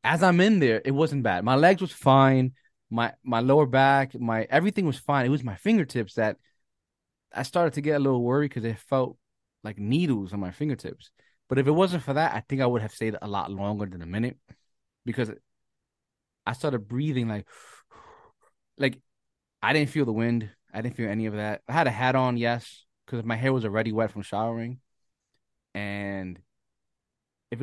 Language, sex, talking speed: English, male, 195 wpm